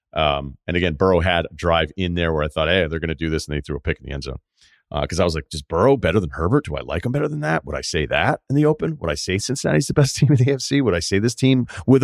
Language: English